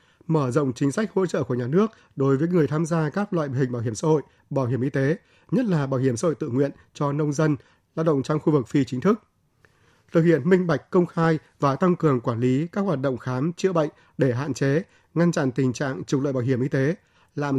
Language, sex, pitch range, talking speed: Vietnamese, male, 135-170 Hz, 255 wpm